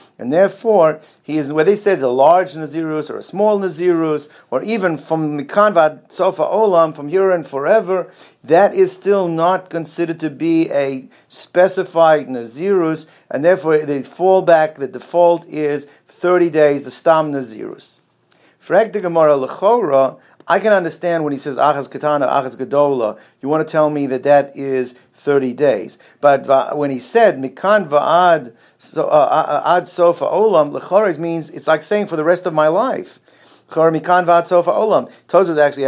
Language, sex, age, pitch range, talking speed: English, male, 50-69, 145-175 Hz, 170 wpm